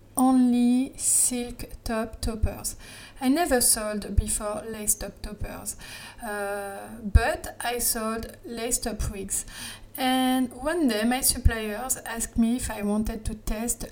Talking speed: 130 wpm